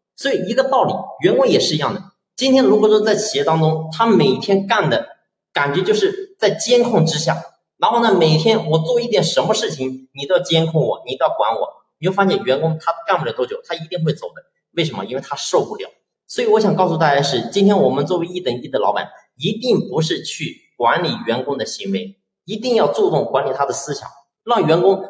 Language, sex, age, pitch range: Chinese, male, 30-49, 155-210 Hz